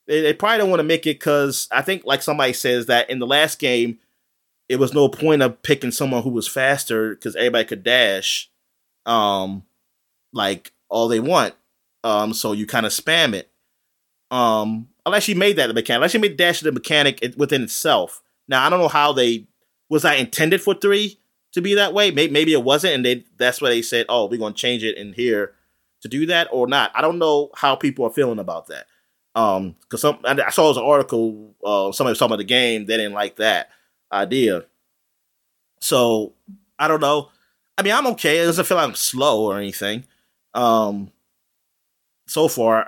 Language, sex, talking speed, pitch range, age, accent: English, male, 205 wpm, 110-155 Hz, 30-49, American